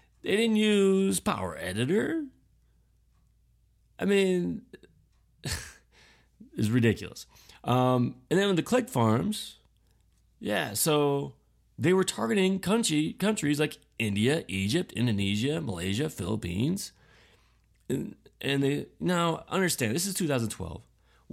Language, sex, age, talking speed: English, male, 30-49, 105 wpm